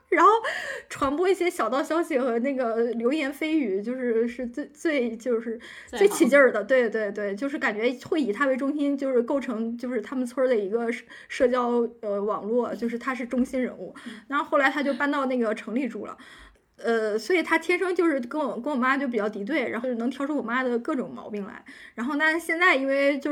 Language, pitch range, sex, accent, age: Chinese, 235-285 Hz, female, native, 20-39